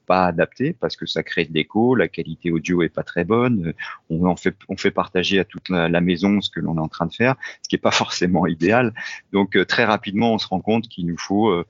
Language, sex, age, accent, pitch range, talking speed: French, male, 40-59, French, 85-100 Hz, 255 wpm